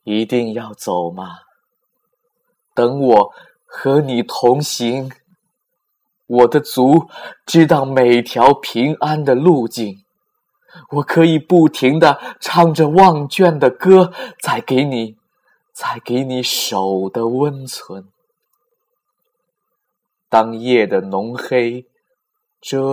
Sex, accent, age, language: male, native, 20-39, Chinese